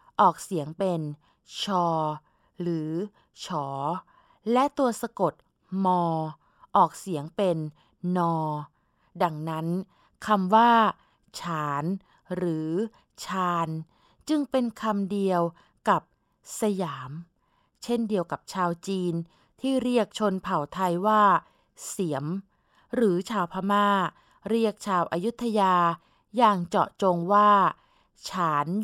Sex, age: female, 20-39